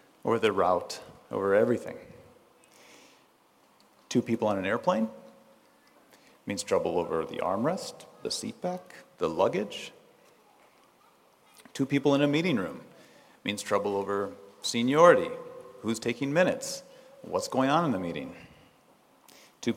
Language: English